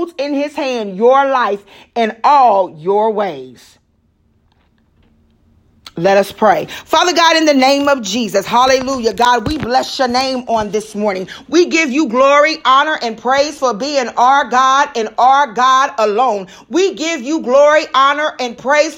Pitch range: 255-355 Hz